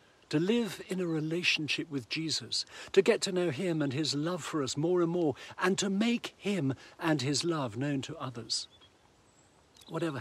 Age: 60-79